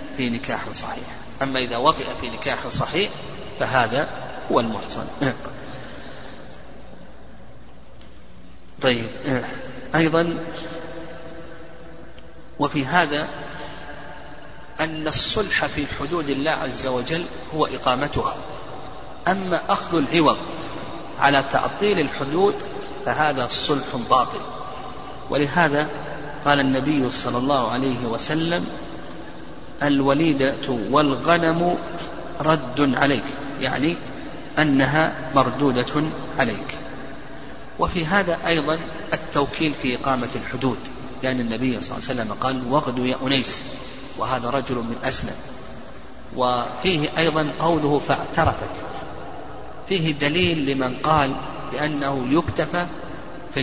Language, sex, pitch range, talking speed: Arabic, male, 130-160 Hz, 90 wpm